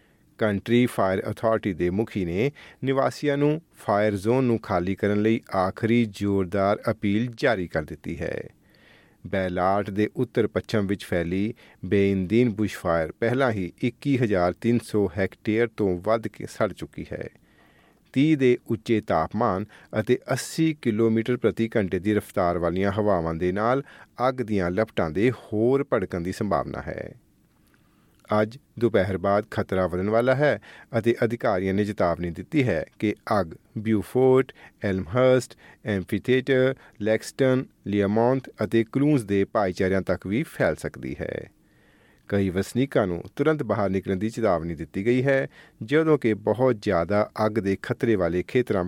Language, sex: Punjabi, male